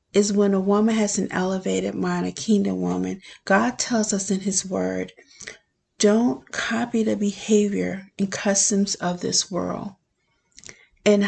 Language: English